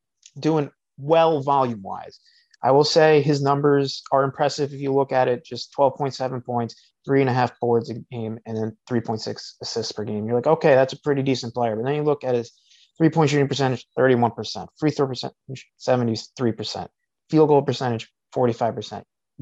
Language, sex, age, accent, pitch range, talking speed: English, male, 30-49, American, 115-140 Hz, 180 wpm